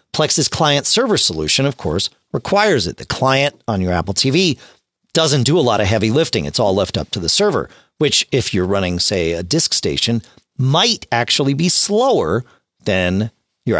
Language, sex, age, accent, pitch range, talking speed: English, male, 40-59, American, 100-165 Hz, 185 wpm